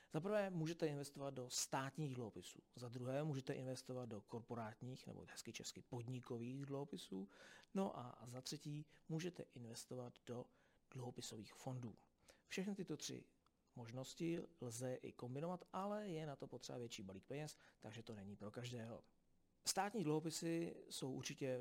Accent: native